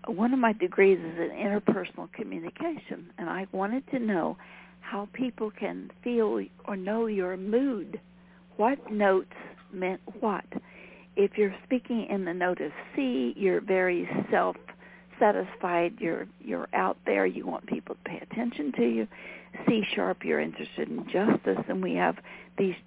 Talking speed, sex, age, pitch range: 150 wpm, female, 60-79, 185-230 Hz